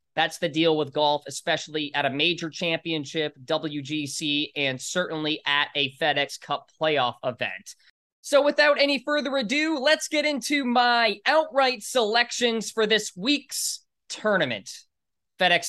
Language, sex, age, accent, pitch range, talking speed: English, male, 20-39, American, 170-230 Hz, 135 wpm